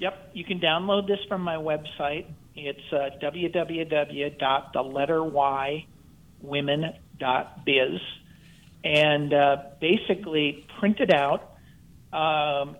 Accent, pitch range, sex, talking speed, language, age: American, 140-170 Hz, male, 85 wpm, English, 50-69